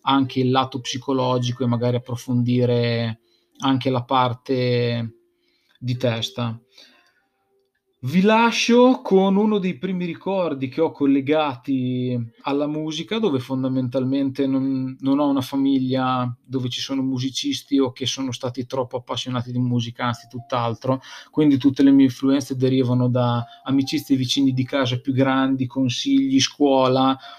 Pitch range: 125-140 Hz